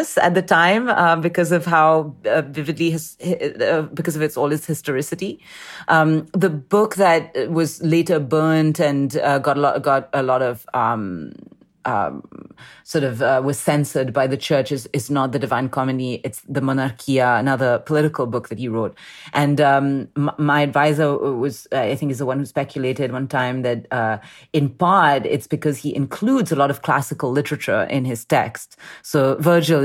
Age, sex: 30-49, female